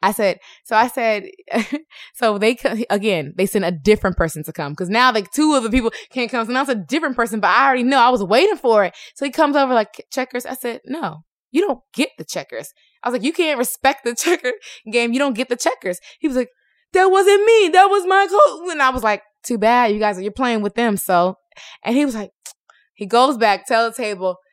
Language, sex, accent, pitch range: English, female, American, 200-275 Hz